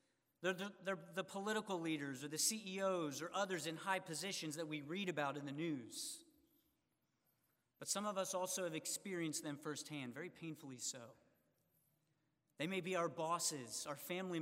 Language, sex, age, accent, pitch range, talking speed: English, male, 40-59, American, 155-200 Hz, 160 wpm